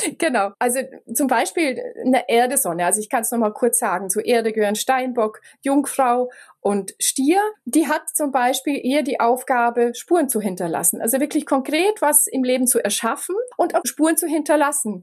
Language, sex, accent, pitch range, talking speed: German, female, German, 225-275 Hz, 170 wpm